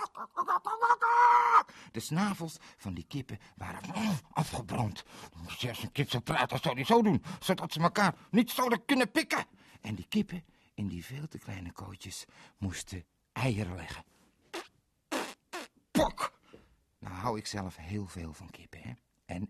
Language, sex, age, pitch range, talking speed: Dutch, male, 50-69, 100-165 Hz, 150 wpm